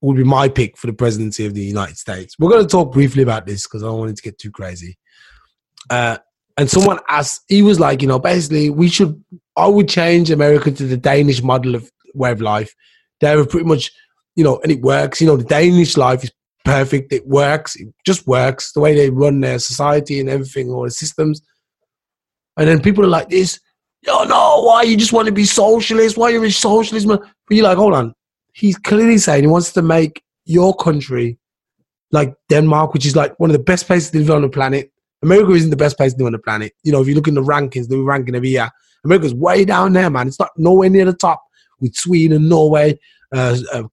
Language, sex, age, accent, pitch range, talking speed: English, male, 20-39, British, 130-180 Hz, 230 wpm